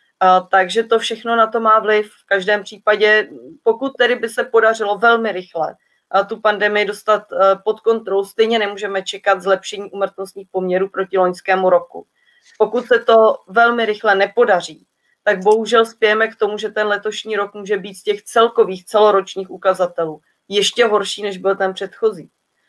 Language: Czech